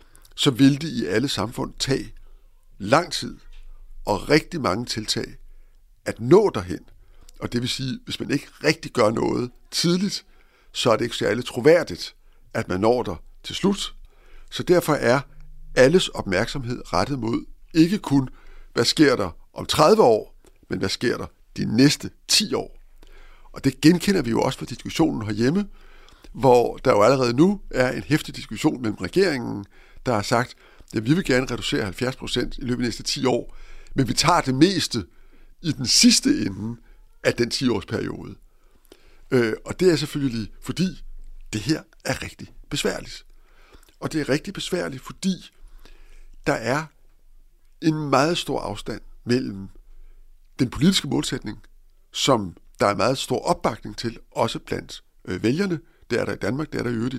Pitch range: 115-155 Hz